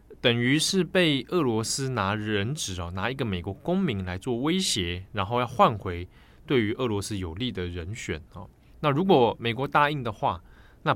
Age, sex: 20-39, male